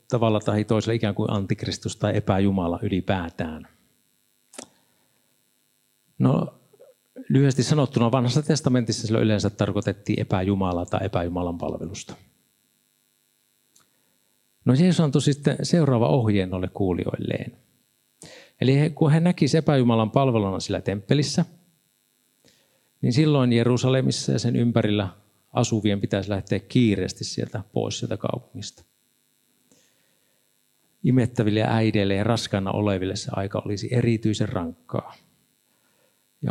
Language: Finnish